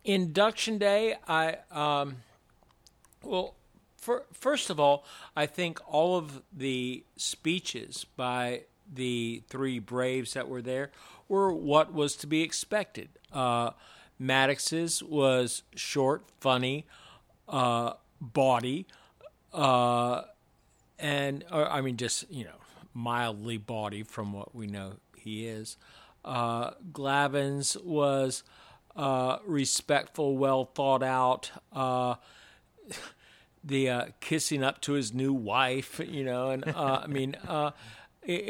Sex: male